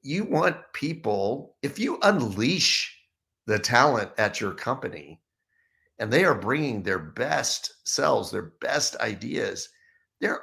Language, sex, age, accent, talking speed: English, male, 50-69, American, 125 wpm